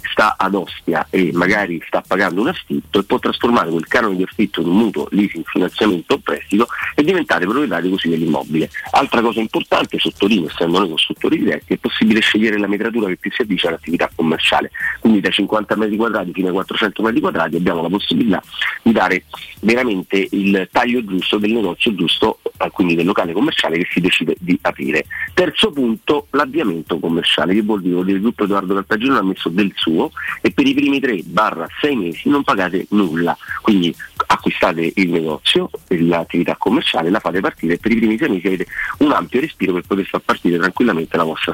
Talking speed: 185 wpm